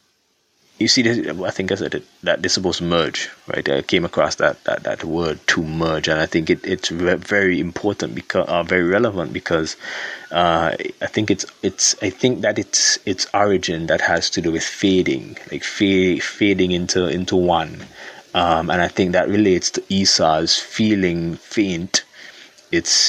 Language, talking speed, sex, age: English, 175 wpm, male, 30-49